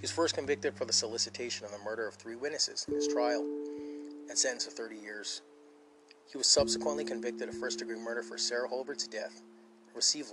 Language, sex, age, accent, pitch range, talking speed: English, male, 30-49, American, 105-145 Hz, 200 wpm